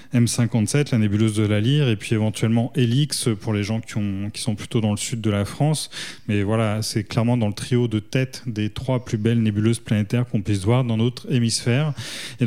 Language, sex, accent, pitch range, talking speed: French, male, French, 110-130 Hz, 220 wpm